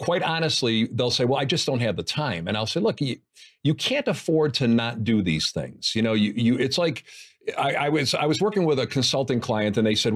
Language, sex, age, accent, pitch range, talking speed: English, male, 50-69, American, 115-170 Hz, 255 wpm